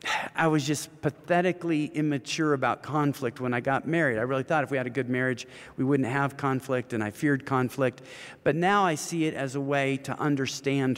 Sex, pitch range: male, 130-160 Hz